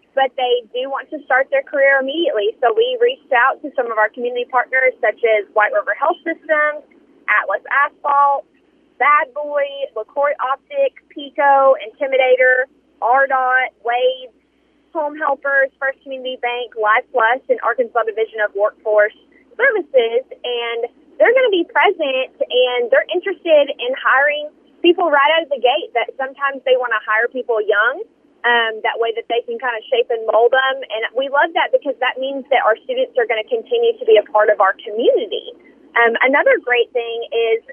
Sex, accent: female, American